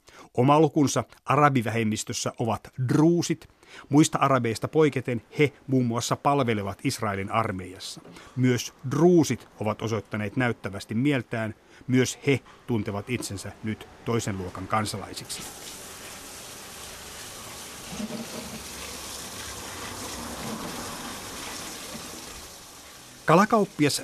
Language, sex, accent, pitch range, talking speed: Finnish, male, native, 110-140 Hz, 70 wpm